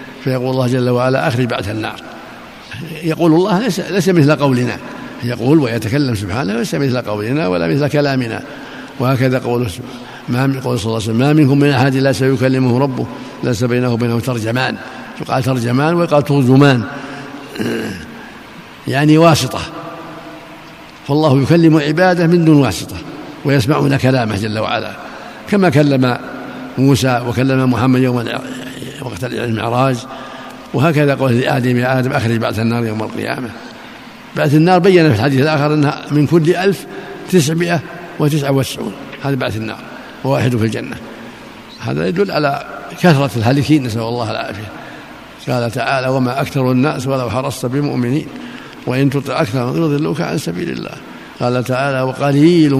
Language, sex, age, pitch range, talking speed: Arabic, male, 60-79, 125-150 Hz, 130 wpm